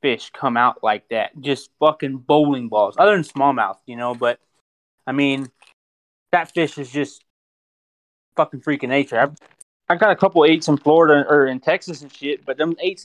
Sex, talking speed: male, 185 wpm